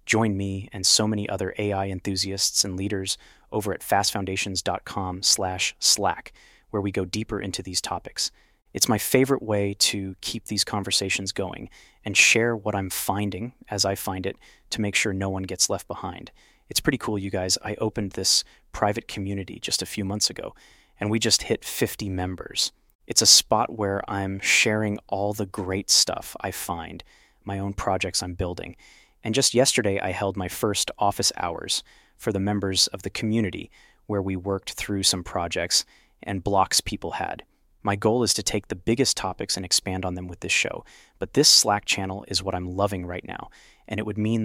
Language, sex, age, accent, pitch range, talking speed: English, male, 30-49, American, 95-105 Hz, 190 wpm